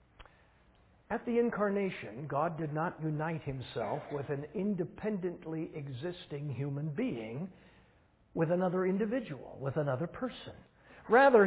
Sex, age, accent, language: male, 60-79, American, English